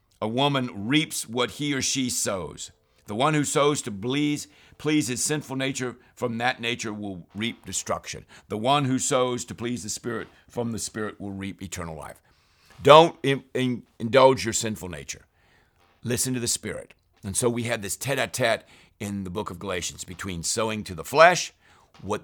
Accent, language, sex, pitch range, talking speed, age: American, English, male, 95-125 Hz, 175 wpm, 50-69